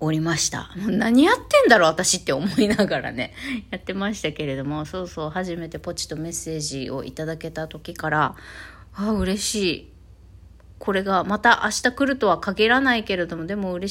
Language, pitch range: Japanese, 155-225 Hz